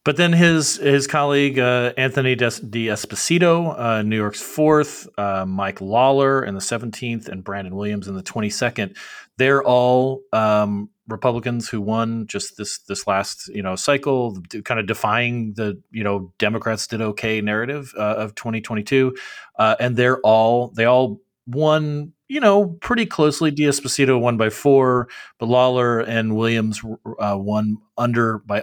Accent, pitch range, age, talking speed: American, 105-130 Hz, 30-49, 160 wpm